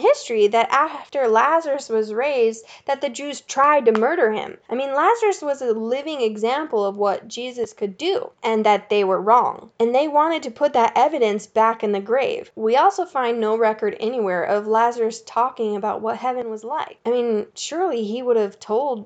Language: English